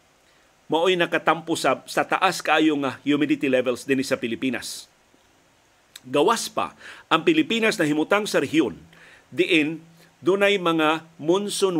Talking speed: 115 wpm